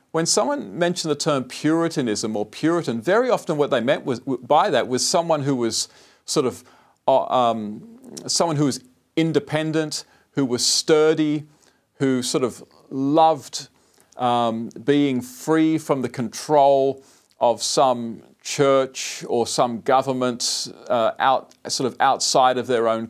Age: 40-59